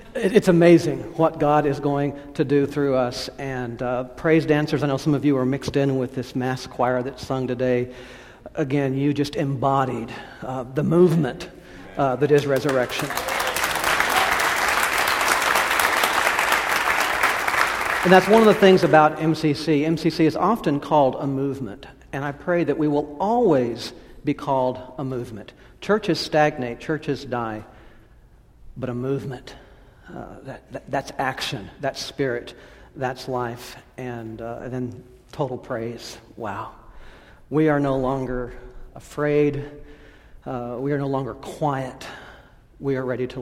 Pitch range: 125-145 Hz